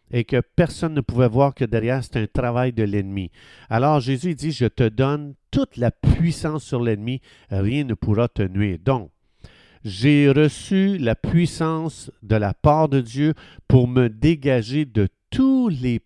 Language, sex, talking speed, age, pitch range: French, male, 175 wpm, 50-69, 110-150 Hz